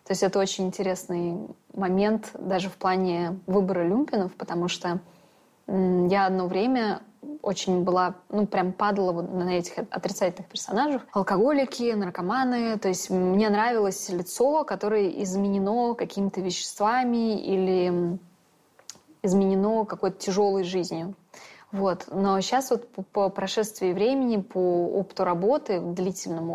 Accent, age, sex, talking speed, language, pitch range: native, 20-39, female, 120 wpm, Russian, 180-210 Hz